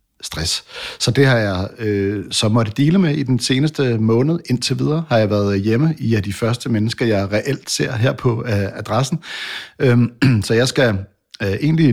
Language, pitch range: English, 105-125 Hz